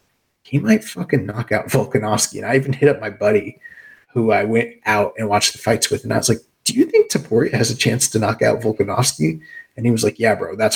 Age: 30-49